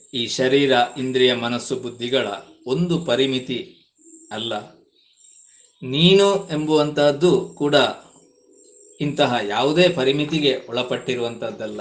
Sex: male